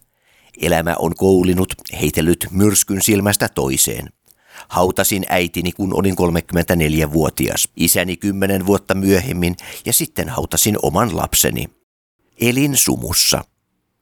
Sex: male